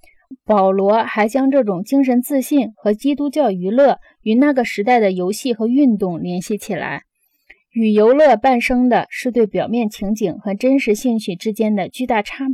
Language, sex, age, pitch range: Chinese, female, 20-39, 205-265 Hz